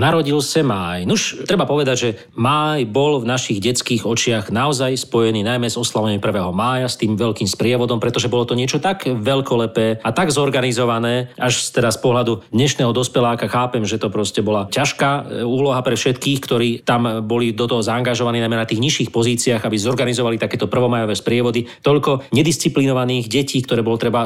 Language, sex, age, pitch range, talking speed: Slovak, male, 40-59, 110-135 Hz, 175 wpm